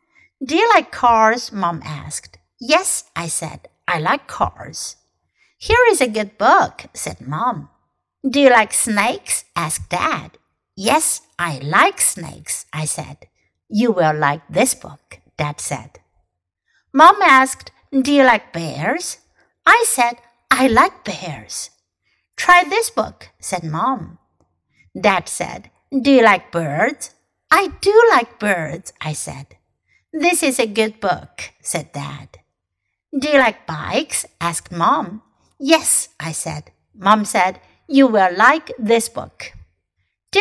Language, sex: Chinese, female